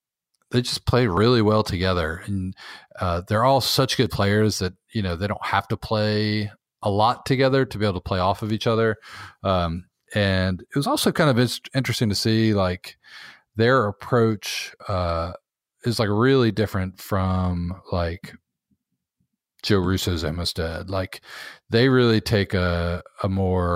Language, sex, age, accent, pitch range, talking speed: English, male, 40-59, American, 90-115 Hz, 160 wpm